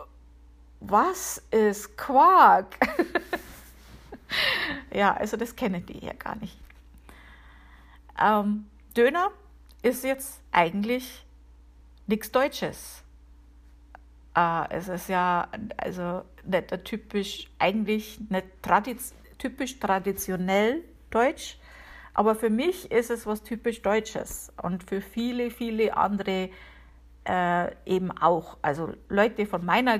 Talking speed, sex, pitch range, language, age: 100 wpm, female, 175-215 Hz, German, 50-69